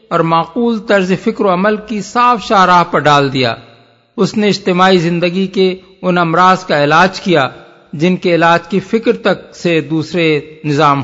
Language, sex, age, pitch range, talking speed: Urdu, male, 50-69, 160-195 Hz, 170 wpm